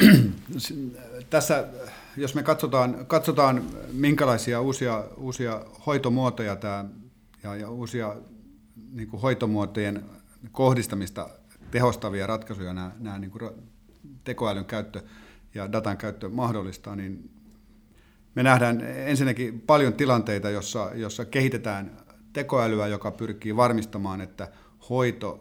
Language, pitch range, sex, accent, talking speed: Finnish, 100-120 Hz, male, native, 100 wpm